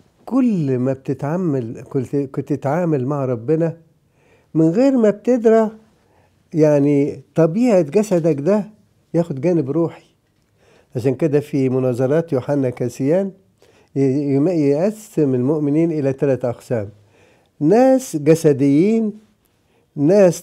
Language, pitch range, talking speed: English, 140-195 Hz, 90 wpm